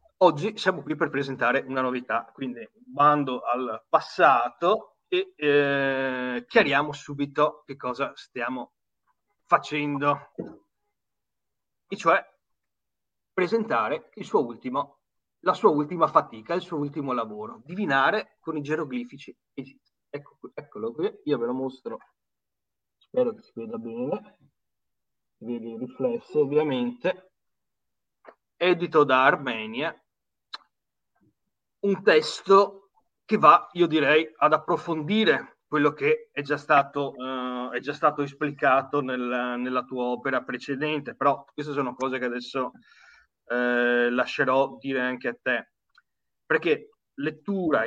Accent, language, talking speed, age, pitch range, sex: native, Italian, 115 wpm, 30-49, 130-165 Hz, male